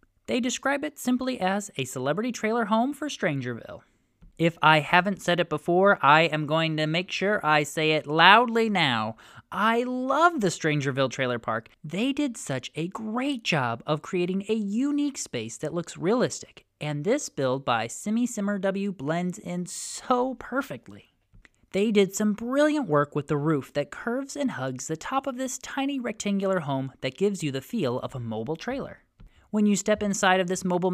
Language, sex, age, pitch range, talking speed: English, male, 20-39, 150-225 Hz, 180 wpm